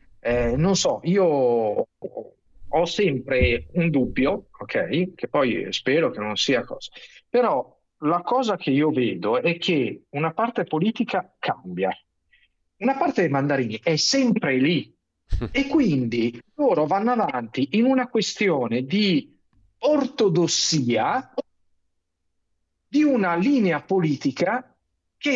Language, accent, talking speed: Italian, native, 120 wpm